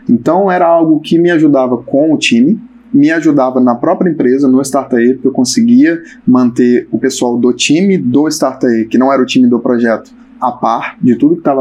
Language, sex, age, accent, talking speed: Portuguese, male, 20-39, Brazilian, 200 wpm